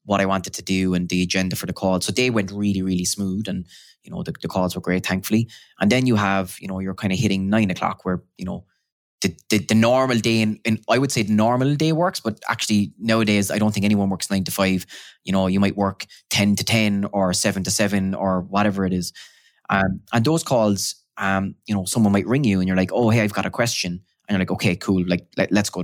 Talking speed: 255 wpm